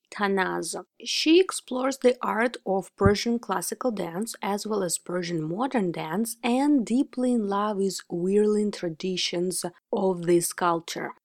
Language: English